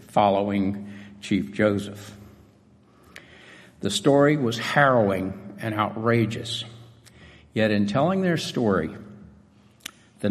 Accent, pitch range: American, 100-135 Hz